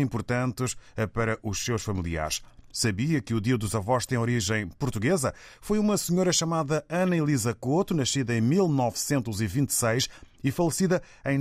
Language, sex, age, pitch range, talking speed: Portuguese, male, 30-49, 110-160 Hz, 140 wpm